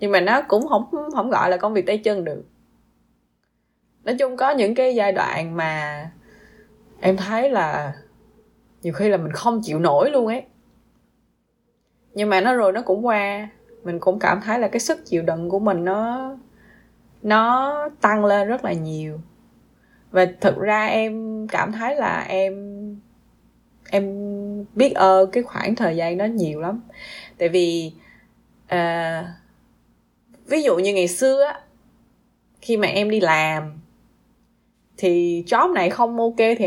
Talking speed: 155 wpm